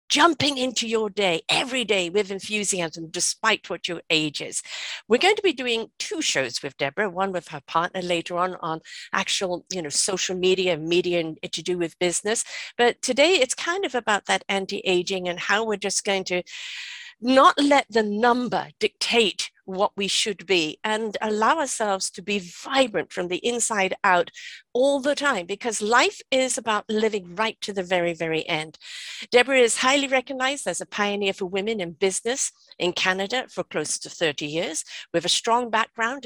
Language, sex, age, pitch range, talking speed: English, female, 50-69, 175-235 Hz, 180 wpm